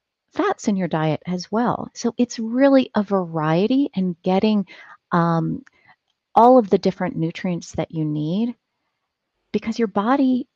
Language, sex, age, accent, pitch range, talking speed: English, female, 40-59, American, 155-205 Hz, 140 wpm